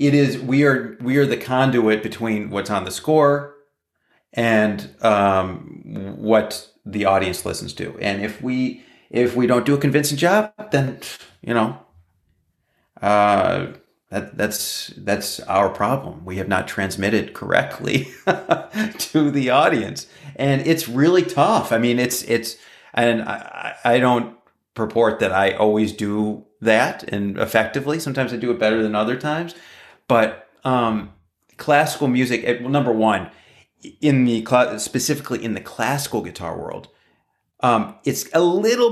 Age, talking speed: 30-49, 145 wpm